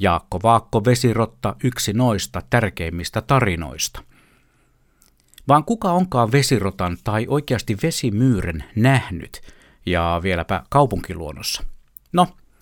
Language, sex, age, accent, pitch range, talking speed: Finnish, male, 60-79, native, 95-125 Hz, 90 wpm